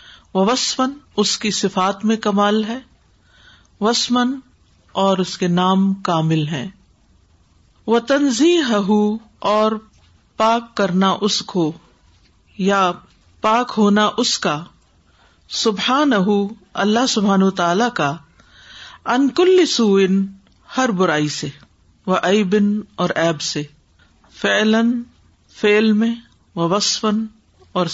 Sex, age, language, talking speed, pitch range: female, 50-69, Urdu, 95 wpm, 185-240 Hz